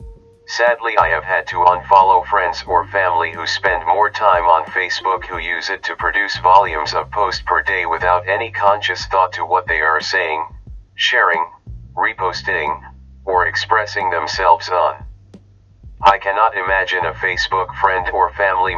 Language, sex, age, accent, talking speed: English, male, 40-59, American, 155 wpm